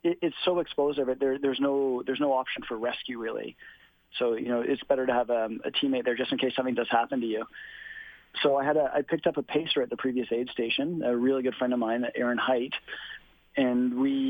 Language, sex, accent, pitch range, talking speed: English, male, American, 125-145 Hz, 230 wpm